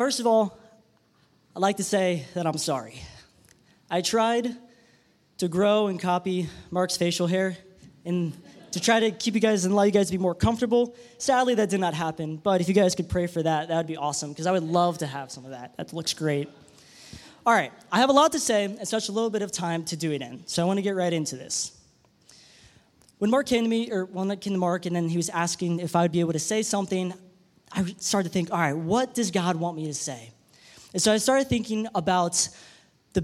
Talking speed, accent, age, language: 240 wpm, American, 20-39, English